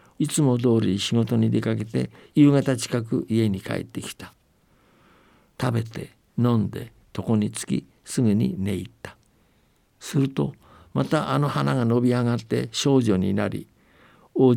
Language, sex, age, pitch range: Japanese, male, 60-79, 110-135 Hz